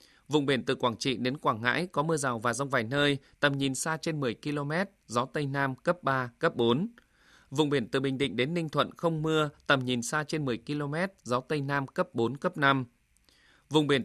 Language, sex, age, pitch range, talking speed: Vietnamese, male, 20-39, 130-160 Hz, 225 wpm